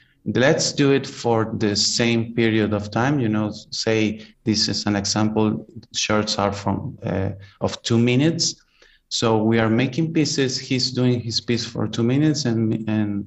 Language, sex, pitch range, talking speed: English, male, 105-130 Hz, 165 wpm